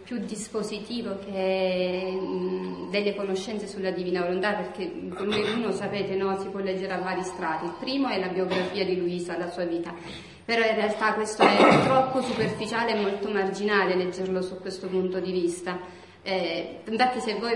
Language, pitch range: Italian, 190-245 Hz